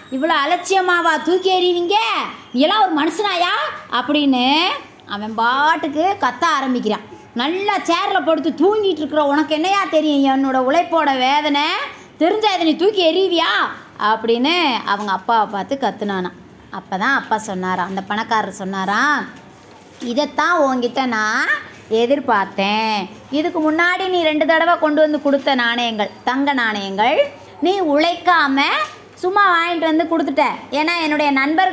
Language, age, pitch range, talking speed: English, 20-39, 245-330 Hz, 105 wpm